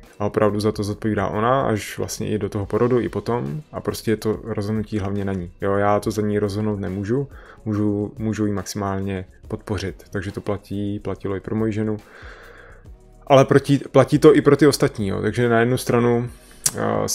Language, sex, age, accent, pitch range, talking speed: Czech, male, 20-39, native, 105-120 Hz, 195 wpm